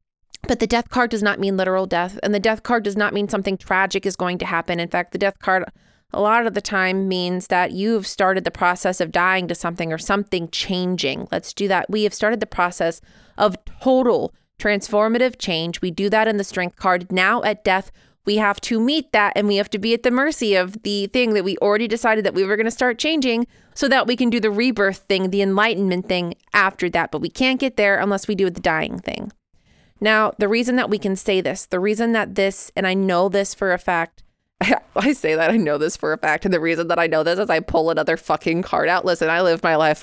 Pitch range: 175-215 Hz